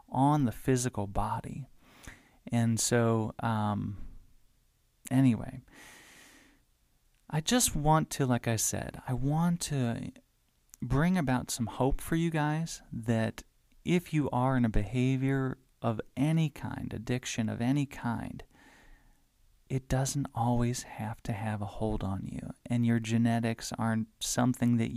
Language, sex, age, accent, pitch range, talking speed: English, male, 30-49, American, 115-140 Hz, 130 wpm